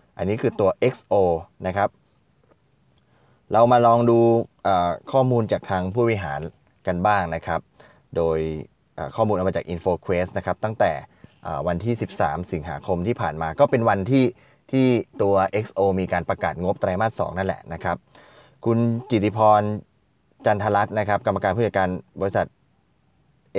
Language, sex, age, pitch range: Thai, male, 20-39, 95-125 Hz